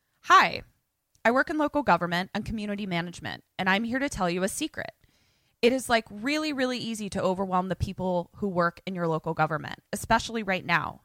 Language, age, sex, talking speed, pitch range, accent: English, 20-39, female, 195 wpm, 170-215 Hz, American